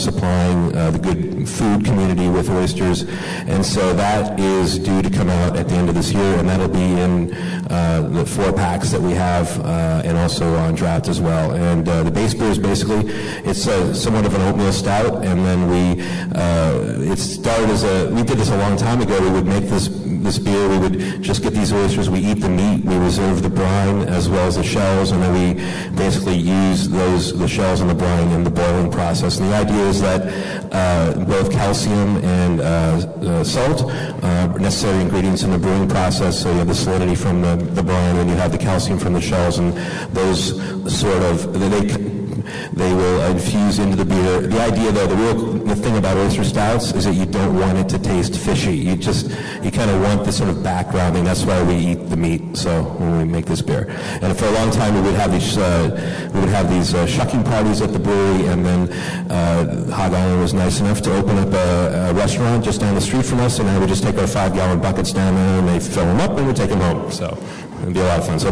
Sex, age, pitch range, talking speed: male, 40-59, 90-100 Hz, 235 wpm